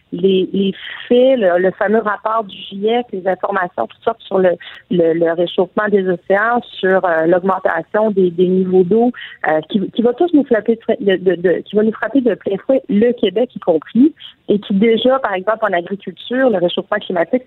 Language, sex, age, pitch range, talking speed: French, female, 40-59, 185-240 Hz, 205 wpm